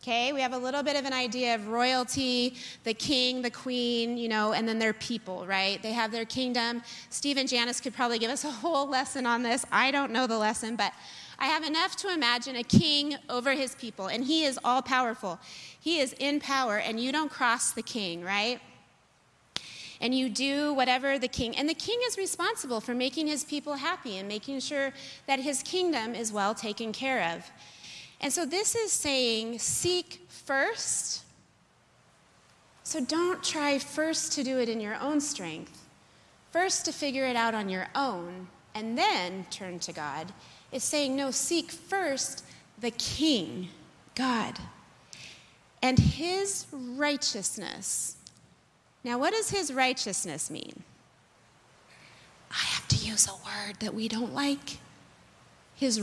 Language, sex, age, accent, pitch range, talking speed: English, female, 30-49, American, 225-285 Hz, 165 wpm